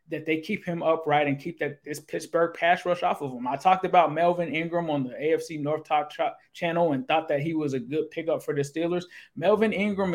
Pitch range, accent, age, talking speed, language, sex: 145-170 Hz, American, 20-39, 235 wpm, English, male